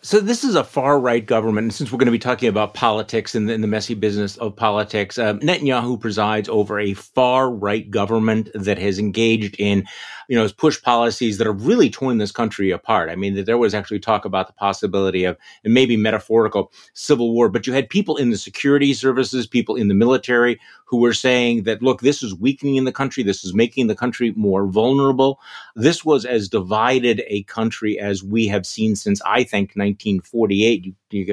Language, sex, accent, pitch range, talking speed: English, male, American, 105-135 Hz, 200 wpm